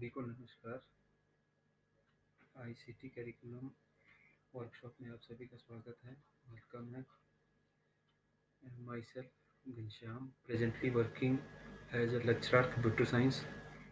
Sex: male